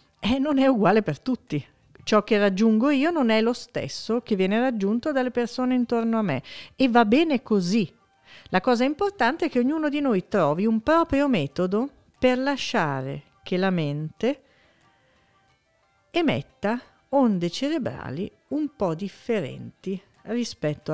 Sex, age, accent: female, 50-69, native